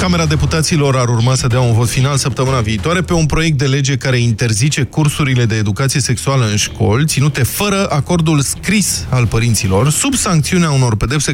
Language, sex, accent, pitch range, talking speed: Romanian, male, native, 115-155 Hz, 180 wpm